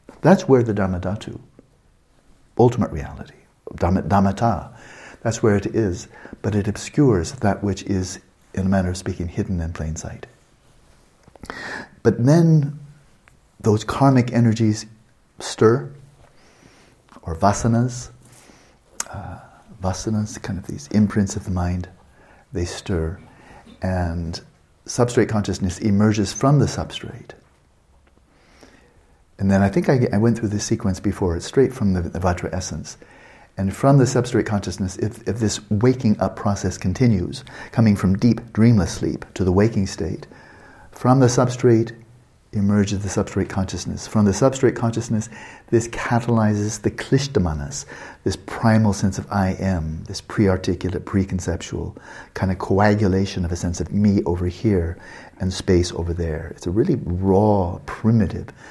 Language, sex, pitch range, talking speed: English, male, 95-115 Hz, 135 wpm